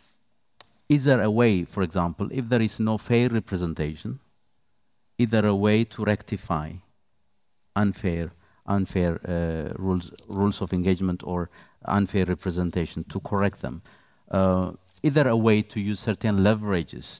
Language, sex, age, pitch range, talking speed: Finnish, male, 50-69, 90-110 Hz, 140 wpm